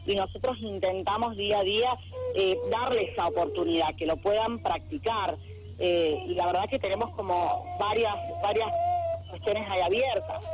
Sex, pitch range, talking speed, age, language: female, 170-230 Hz, 150 wpm, 30-49, Spanish